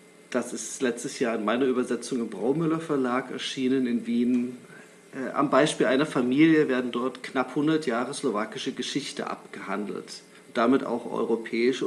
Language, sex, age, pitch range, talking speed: Slovak, male, 40-59, 125-145 Hz, 140 wpm